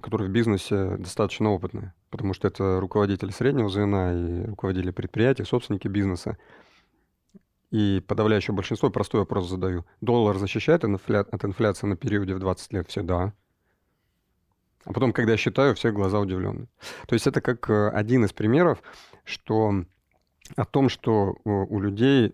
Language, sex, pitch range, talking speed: Russian, male, 100-115 Hz, 140 wpm